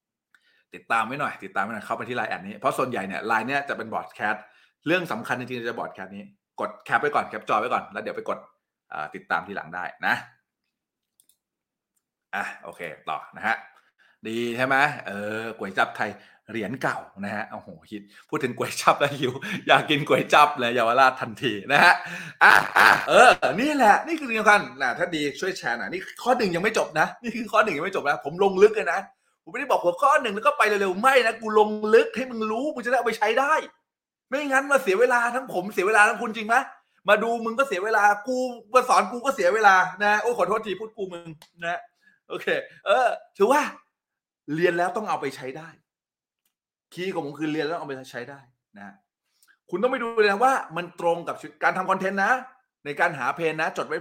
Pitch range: 155-235 Hz